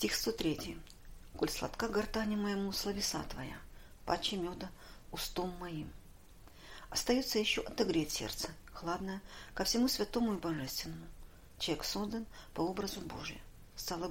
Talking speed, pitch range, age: 125 wpm, 160-220 Hz, 50-69